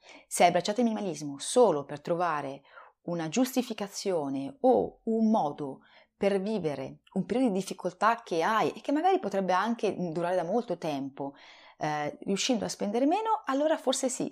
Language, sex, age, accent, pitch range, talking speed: Italian, female, 30-49, native, 165-240 Hz, 160 wpm